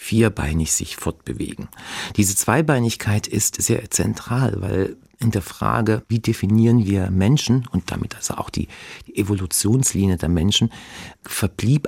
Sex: male